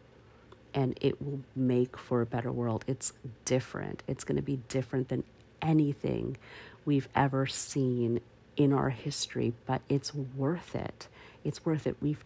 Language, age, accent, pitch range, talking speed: English, 50-69, American, 115-135 Hz, 150 wpm